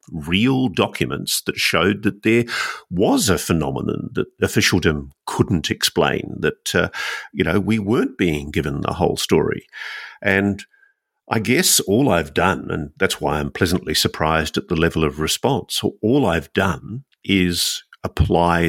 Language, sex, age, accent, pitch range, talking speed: English, male, 50-69, Australian, 80-110 Hz, 150 wpm